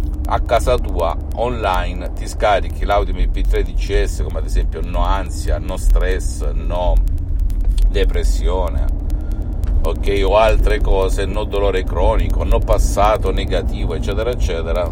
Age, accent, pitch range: 50-69, native, 75-95 Hz